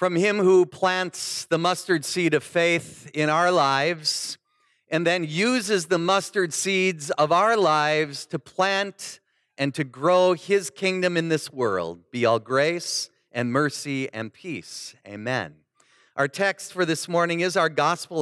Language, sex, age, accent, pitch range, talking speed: English, male, 40-59, American, 150-195 Hz, 155 wpm